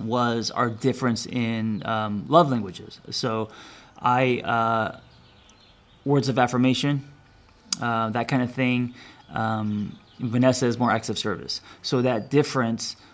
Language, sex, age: English, male, 20-39